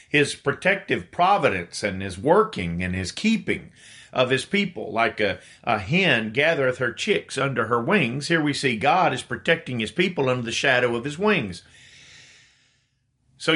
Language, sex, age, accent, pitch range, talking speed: English, male, 50-69, American, 120-165 Hz, 165 wpm